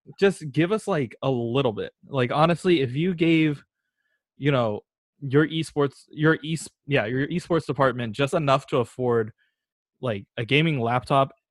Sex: male